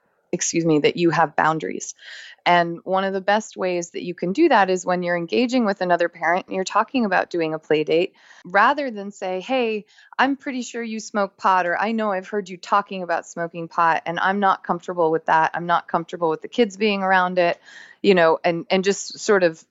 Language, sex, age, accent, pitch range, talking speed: English, female, 20-39, American, 165-200 Hz, 225 wpm